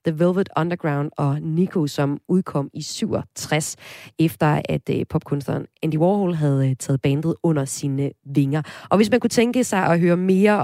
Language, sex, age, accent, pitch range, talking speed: Danish, female, 30-49, native, 145-200 Hz, 165 wpm